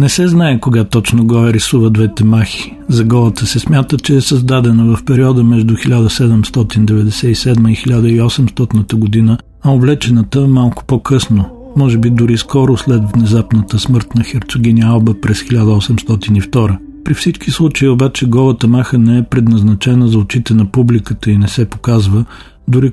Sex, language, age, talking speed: male, Bulgarian, 40-59, 155 wpm